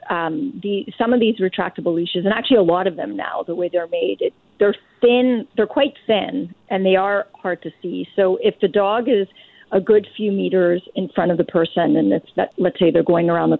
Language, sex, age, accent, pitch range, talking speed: English, female, 40-59, American, 175-225 Hz, 235 wpm